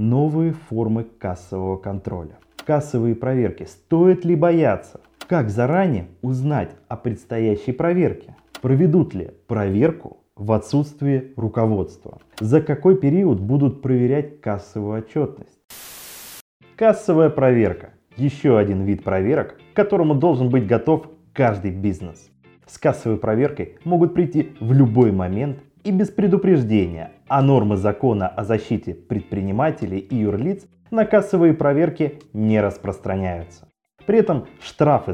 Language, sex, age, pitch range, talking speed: Russian, male, 20-39, 105-165 Hz, 115 wpm